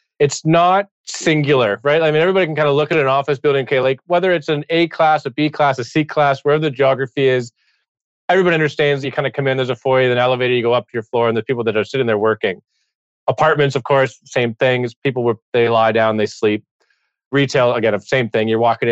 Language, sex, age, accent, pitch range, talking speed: English, male, 30-49, American, 125-155 Hz, 240 wpm